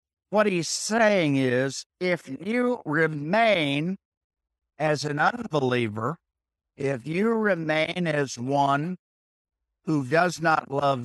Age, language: 60-79, English